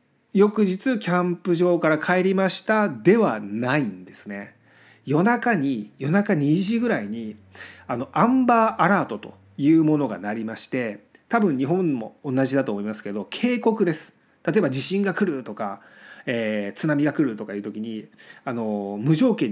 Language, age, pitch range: Japanese, 40-59, 135-220 Hz